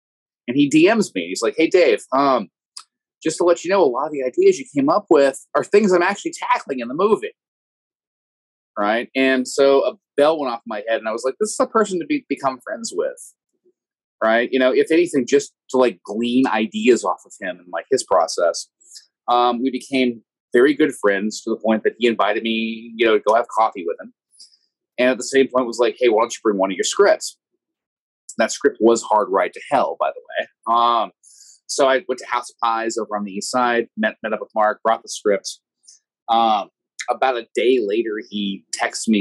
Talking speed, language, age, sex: 225 wpm, English, 30-49, male